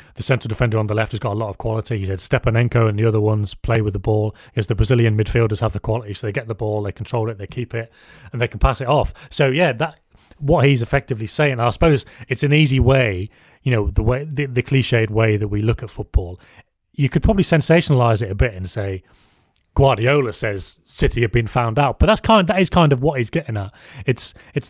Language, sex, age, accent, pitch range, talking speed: English, male, 30-49, British, 110-140 Hz, 250 wpm